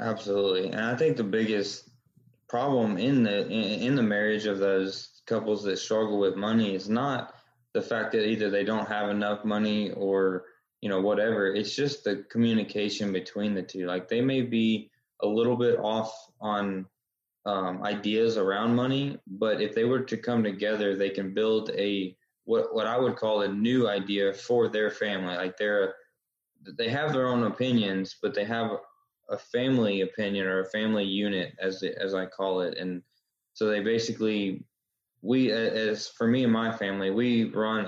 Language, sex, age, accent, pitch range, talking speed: English, male, 20-39, American, 95-115 Hz, 175 wpm